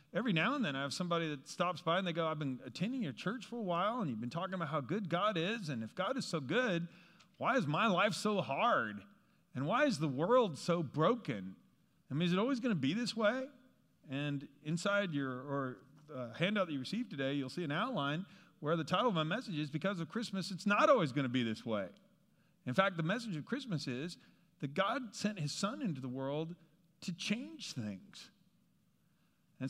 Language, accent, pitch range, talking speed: English, American, 145-195 Hz, 220 wpm